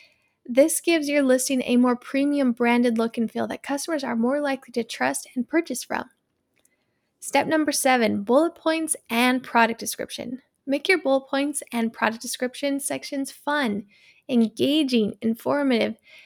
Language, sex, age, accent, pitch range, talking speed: English, female, 10-29, American, 235-290 Hz, 150 wpm